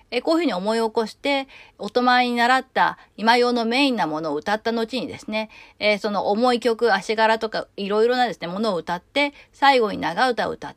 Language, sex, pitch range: Japanese, female, 220-275 Hz